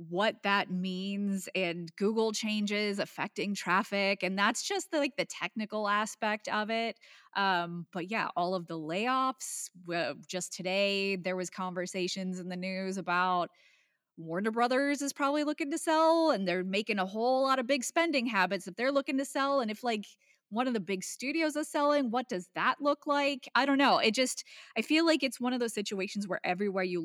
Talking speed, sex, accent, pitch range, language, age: 195 wpm, female, American, 185-285 Hz, English, 20-39